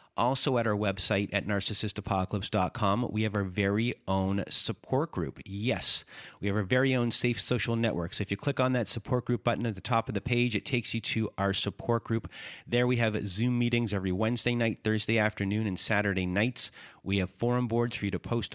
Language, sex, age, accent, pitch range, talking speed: English, male, 30-49, American, 100-115 Hz, 210 wpm